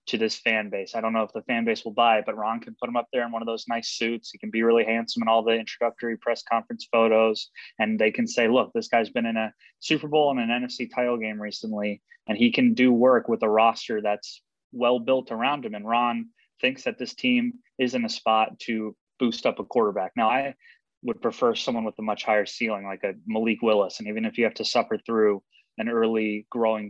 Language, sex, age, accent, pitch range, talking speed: English, male, 20-39, American, 110-130 Hz, 245 wpm